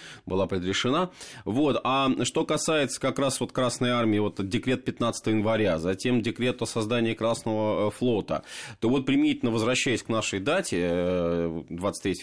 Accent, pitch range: native, 100-125 Hz